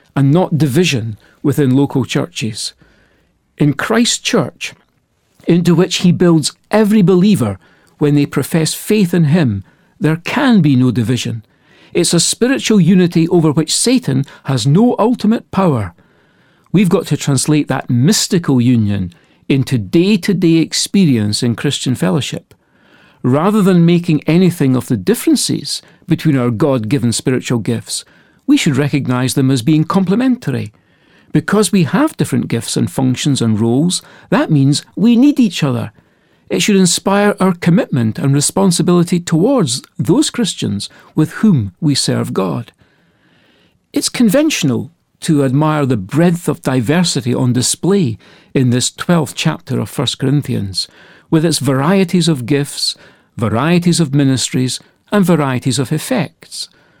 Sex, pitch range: male, 130-180 Hz